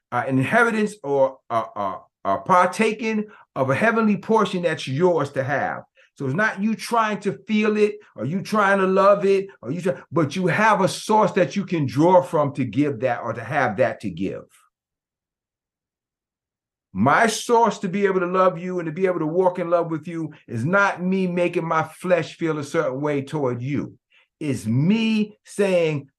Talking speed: 180 wpm